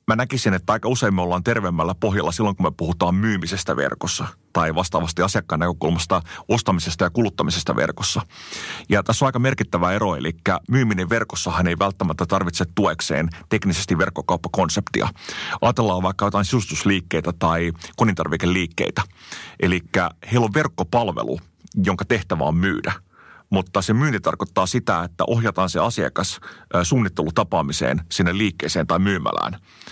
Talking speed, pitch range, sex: 130 wpm, 90-110 Hz, male